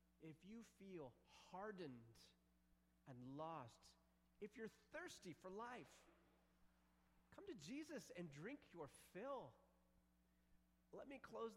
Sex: male